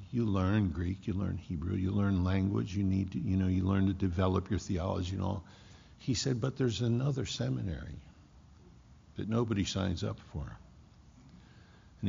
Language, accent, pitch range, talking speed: English, American, 90-105 Hz, 170 wpm